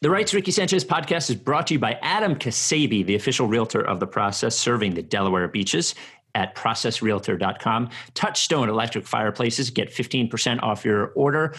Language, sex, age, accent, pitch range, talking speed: English, male, 40-59, American, 105-135 Hz, 165 wpm